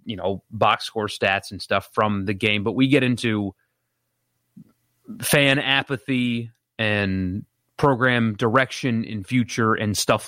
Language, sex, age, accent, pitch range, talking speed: English, male, 30-49, American, 105-125 Hz, 135 wpm